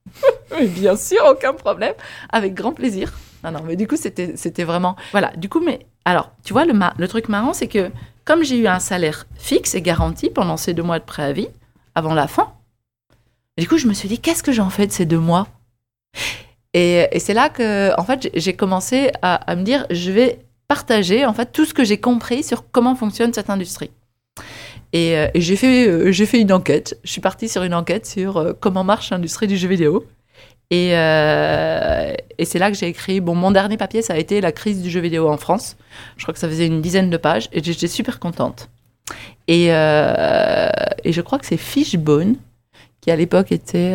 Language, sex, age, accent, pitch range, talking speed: French, female, 30-49, French, 160-220 Hz, 215 wpm